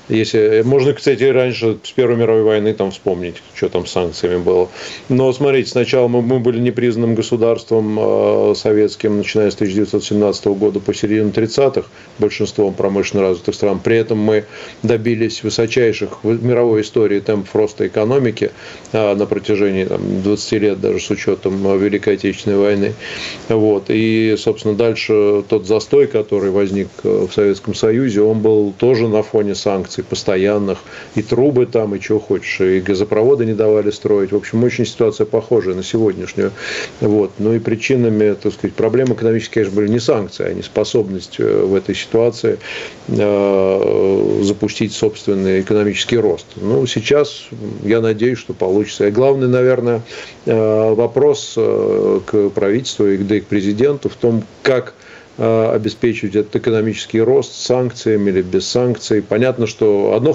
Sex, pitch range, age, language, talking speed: male, 105-120 Hz, 40-59, Russian, 145 wpm